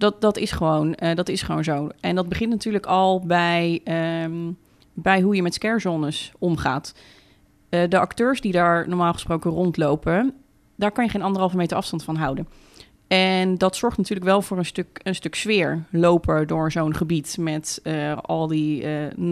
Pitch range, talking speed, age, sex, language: 160-195 Hz, 165 wpm, 30-49, female, Dutch